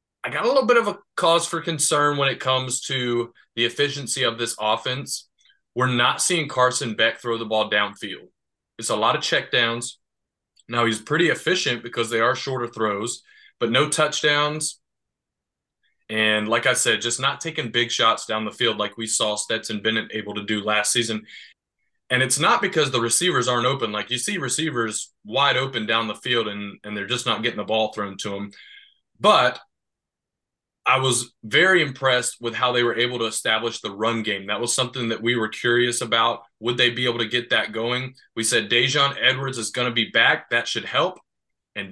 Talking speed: 200 wpm